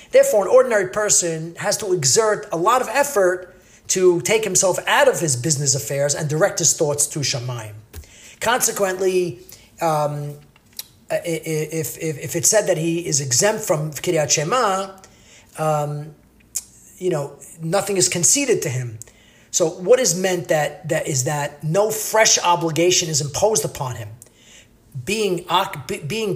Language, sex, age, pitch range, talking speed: English, male, 30-49, 145-190 Hz, 145 wpm